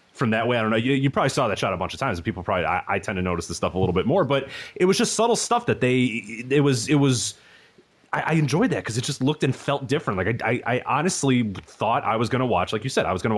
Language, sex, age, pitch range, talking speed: English, male, 30-49, 115-150 Hz, 310 wpm